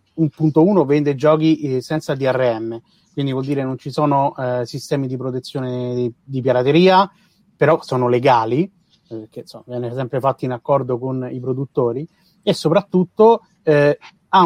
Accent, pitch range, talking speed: native, 130-160 Hz, 155 wpm